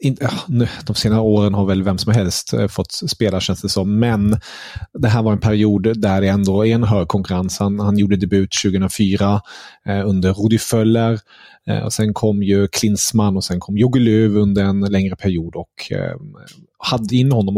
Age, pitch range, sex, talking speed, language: 30-49, 100-130 Hz, male, 190 wpm, Swedish